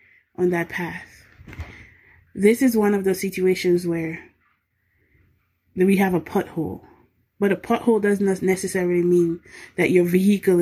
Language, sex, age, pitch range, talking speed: English, female, 20-39, 170-205 Hz, 135 wpm